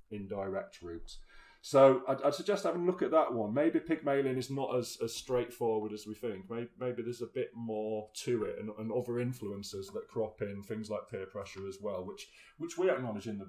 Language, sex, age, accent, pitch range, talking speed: English, male, 30-49, British, 100-125 Hz, 220 wpm